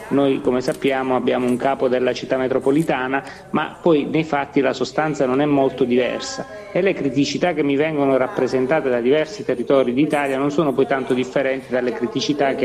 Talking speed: 180 wpm